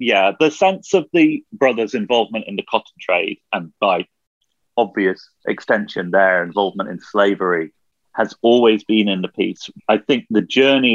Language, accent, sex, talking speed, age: English, British, male, 160 wpm, 30-49